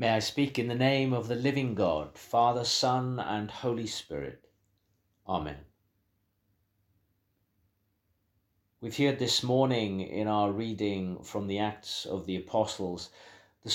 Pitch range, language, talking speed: 95-105 Hz, English, 130 wpm